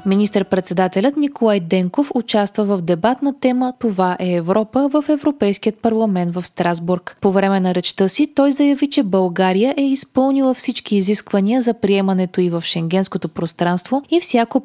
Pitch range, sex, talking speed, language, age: 185-255 Hz, female, 150 wpm, Bulgarian, 20-39